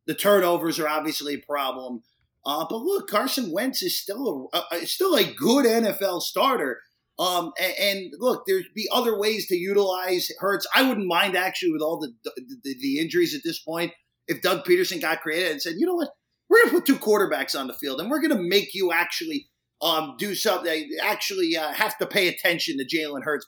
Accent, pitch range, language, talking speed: American, 170-250 Hz, English, 210 wpm